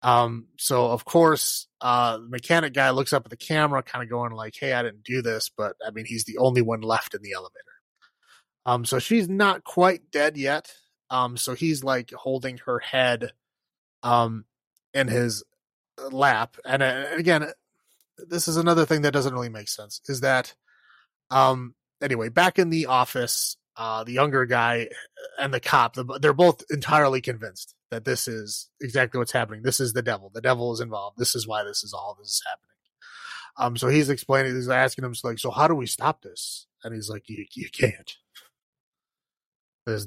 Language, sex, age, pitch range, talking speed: English, male, 30-49, 115-140 Hz, 185 wpm